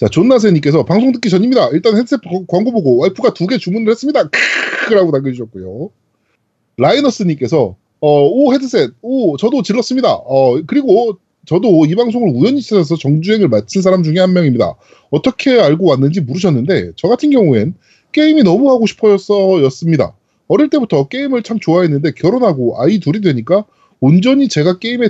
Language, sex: Korean, male